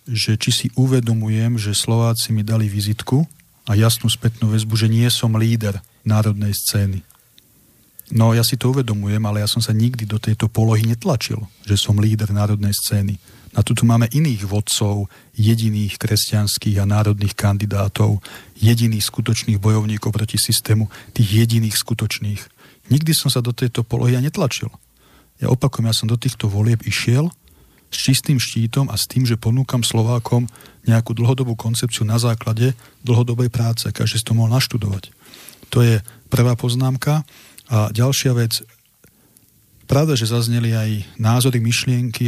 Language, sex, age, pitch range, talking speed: English, male, 40-59, 110-125 Hz, 155 wpm